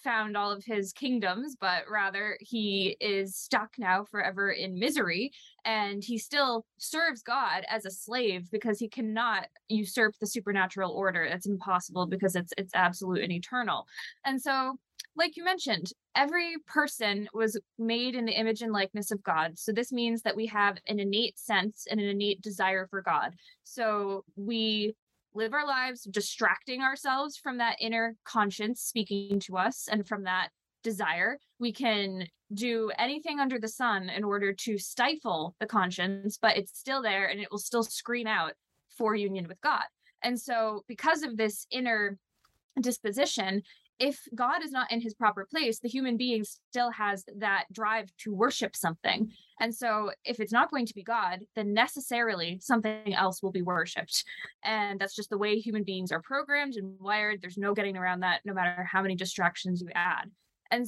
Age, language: 20-39, English